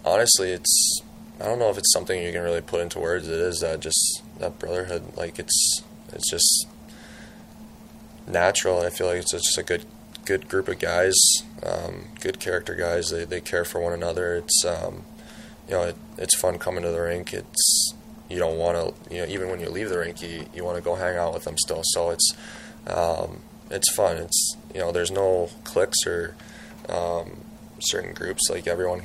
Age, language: 20-39, English